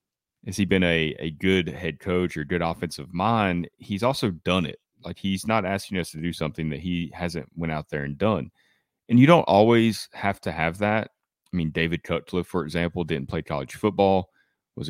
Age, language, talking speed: 30-49, English, 205 wpm